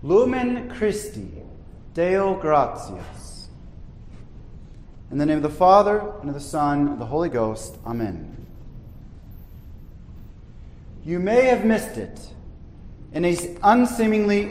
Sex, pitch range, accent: male, 140-200 Hz, American